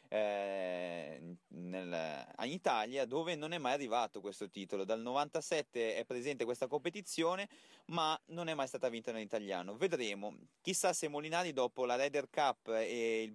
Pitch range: 110-155 Hz